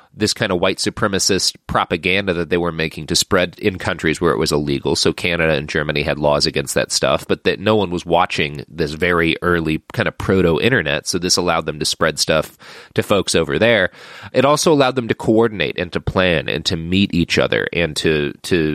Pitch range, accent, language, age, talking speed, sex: 85-110 Hz, American, English, 30-49, 220 wpm, male